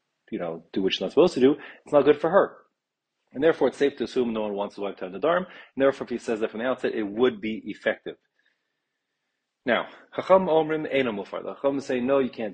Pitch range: 105-140 Hz